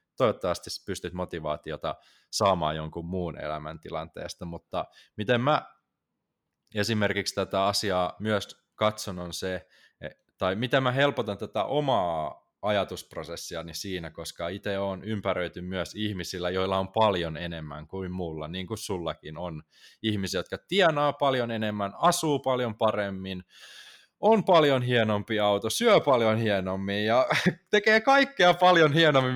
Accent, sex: native, male